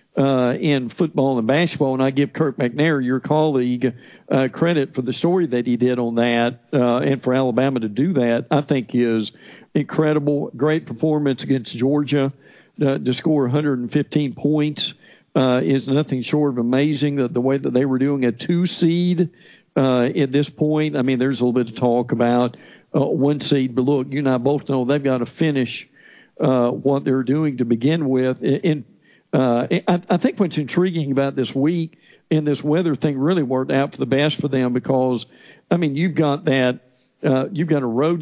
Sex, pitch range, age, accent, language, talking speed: male, 130-155 Hz, 50-69, American, English, 195 wpm